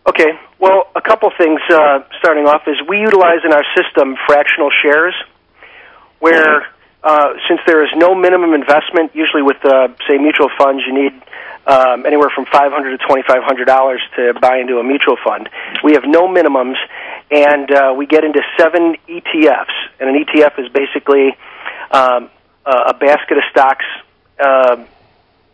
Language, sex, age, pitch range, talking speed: English, male, 40-59, 135-165 Hz, 155 wpm